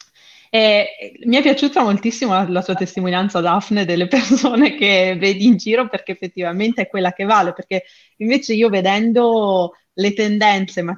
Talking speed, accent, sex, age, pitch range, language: 160 wpm, native, female, 20-39, 185-225 Hz, Italian